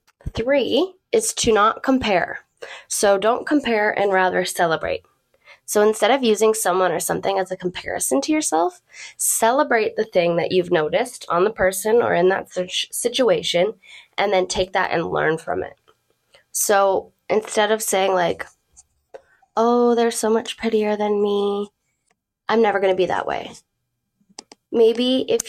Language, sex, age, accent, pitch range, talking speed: English, female, 10-29, American, 185-225 Hz, 155 wpm